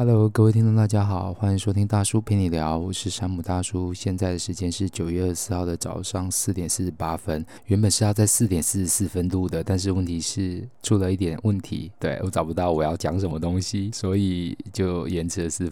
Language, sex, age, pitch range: Chinese, male, 20-39, 90-105 Hz